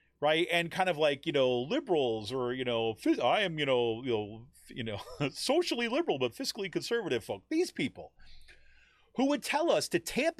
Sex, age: male, 40-59